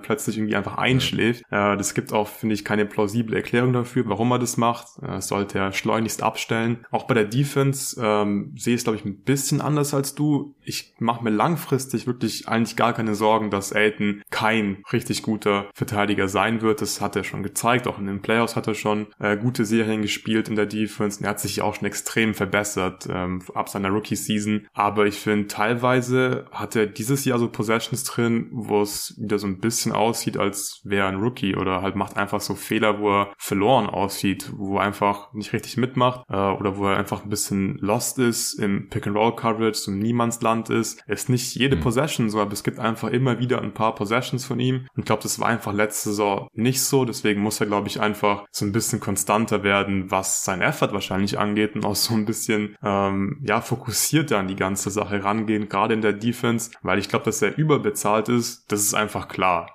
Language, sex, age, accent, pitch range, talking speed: German, male, 20-39, German, 100-120 Hz, 205 wpm